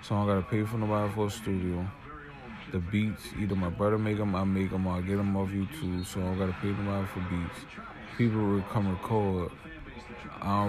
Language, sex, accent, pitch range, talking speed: English, male, American, 95-120 Hz, 230 wpm